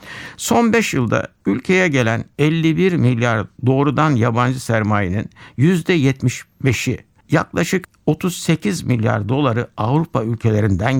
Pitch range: 115-155 Hz